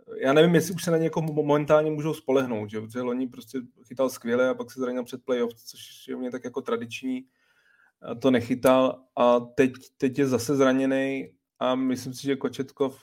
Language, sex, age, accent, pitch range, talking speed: Czech, male, 30-49, native, 115-130 Hz, 195 wpm